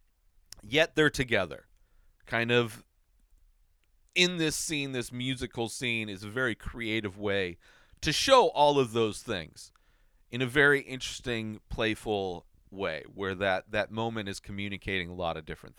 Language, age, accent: English, 40-59, American